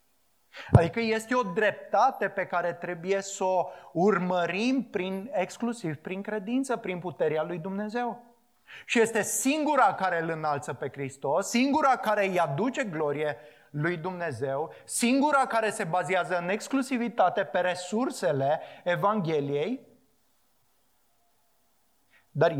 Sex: male